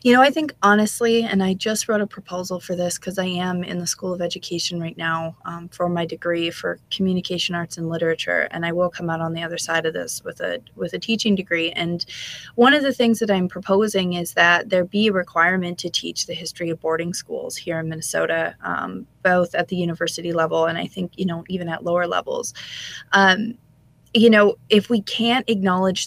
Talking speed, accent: 215 wpm, American